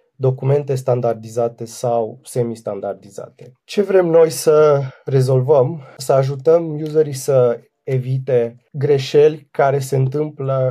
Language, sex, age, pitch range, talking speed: Romanian, male, 30-49, 120-140 Hz, 100 wpm